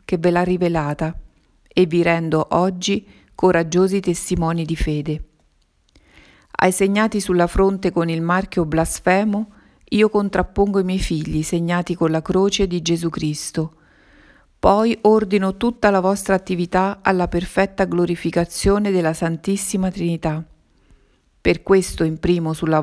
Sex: female